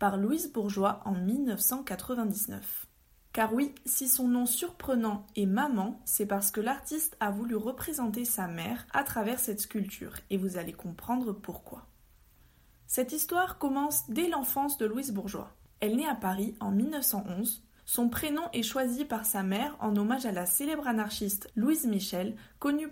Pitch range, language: 200-255 Hz, French